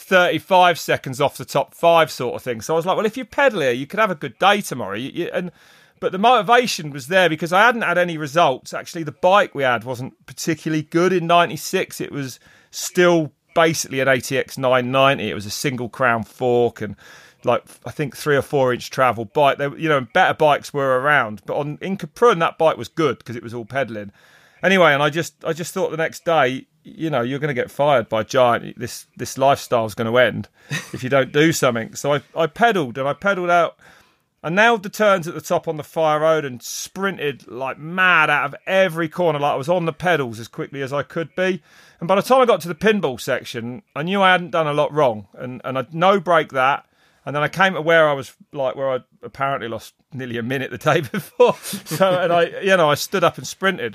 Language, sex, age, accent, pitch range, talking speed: English, male, 30-49, British, 130-175 Hz, 240 wpm